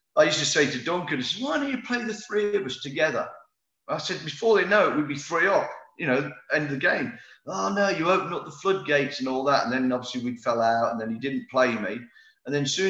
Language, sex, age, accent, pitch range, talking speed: English, male, 40-59, British, 130-165 Hz, 275 wpm